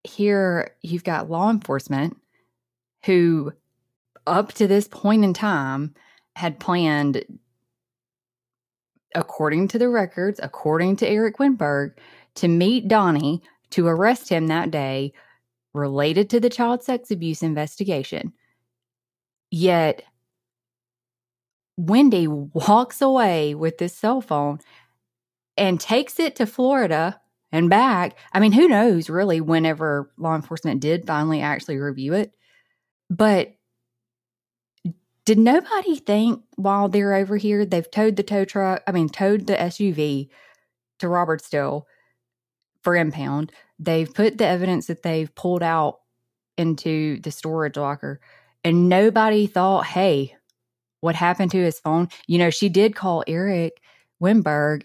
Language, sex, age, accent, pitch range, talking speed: English, female, 20-39, American, 145-200 Hz, 125 wpm